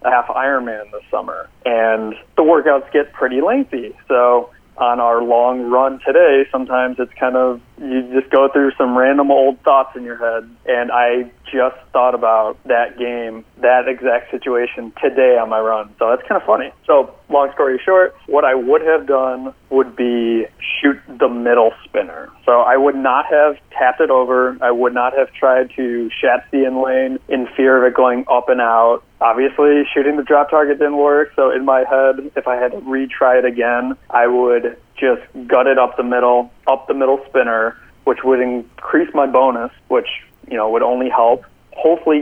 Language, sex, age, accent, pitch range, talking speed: English, male, 30-49, American, 120-135 Hz, 190 wpm